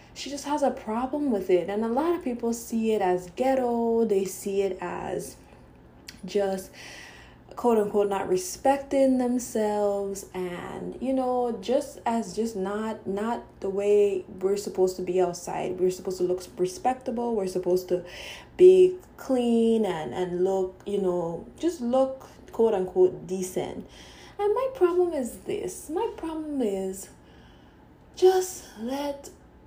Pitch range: 190-250 Hz